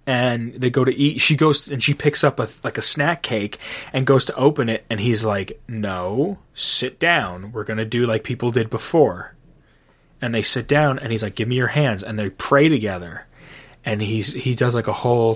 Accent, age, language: American, 20-39, English